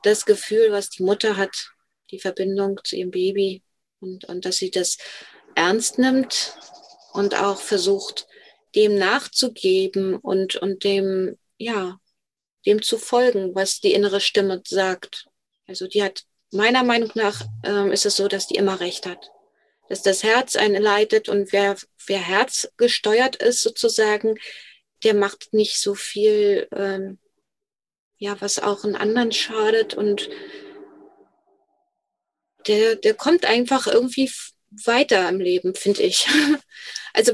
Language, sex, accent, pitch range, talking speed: German, female, German, 200-260 Hz, 135 wpm